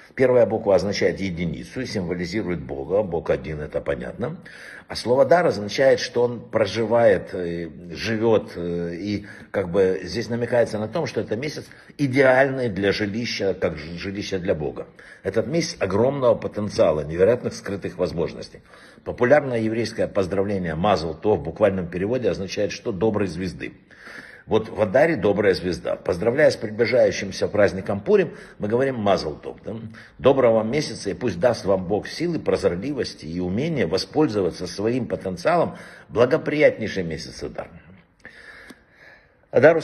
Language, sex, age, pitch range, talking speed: Russian, male, 60-79, 95-115 Hz, 130 wpm